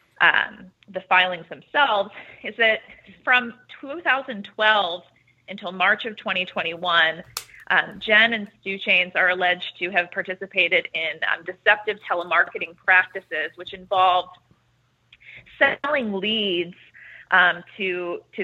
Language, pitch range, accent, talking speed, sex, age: English, 180-210 Hz, American, 105 wpm, female, 30-49